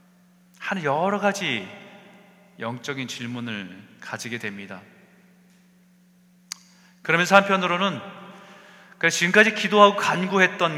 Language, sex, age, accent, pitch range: Korean, male, 40-59, native, 165-205 Hz